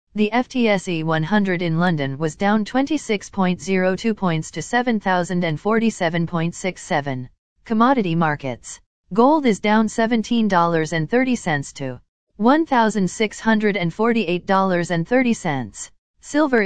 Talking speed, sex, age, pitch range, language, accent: 70 wpm, female, 40-59, 165-235 Hz, English, American